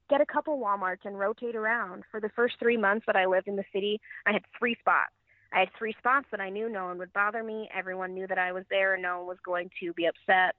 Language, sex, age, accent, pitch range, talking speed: English, female, 30-49, American, 185-215 Hz, 270 wpm